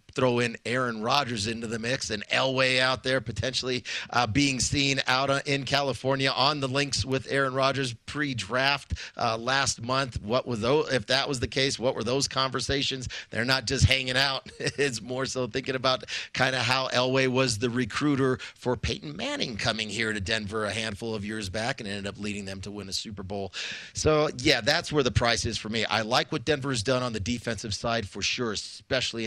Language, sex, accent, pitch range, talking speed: English, male, American, 110-130 Hz, 205 wpm